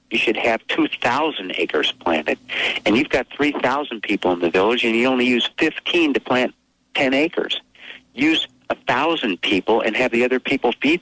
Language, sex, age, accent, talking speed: English, male, 60-79, American, 175 wpm